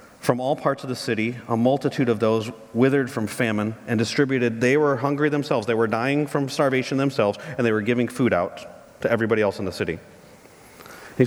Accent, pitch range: American, 110-140 Hz